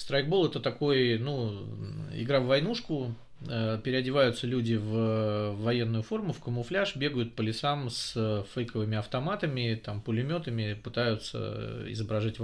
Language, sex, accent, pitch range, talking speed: Russian, male, native, 115-135 Hz, 115 wpm